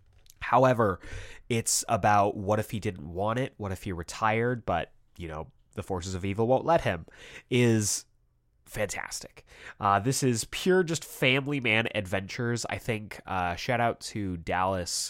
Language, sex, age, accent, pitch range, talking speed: English, male, 20-39, American, 90-120 Hz, 160 wpm